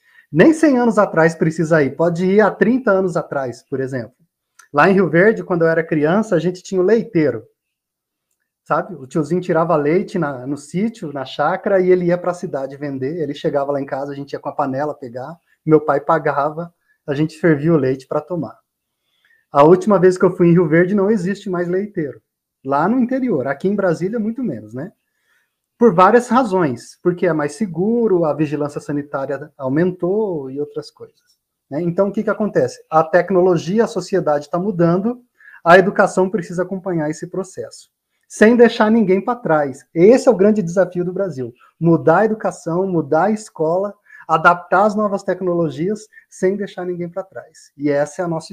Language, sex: Portuguese, male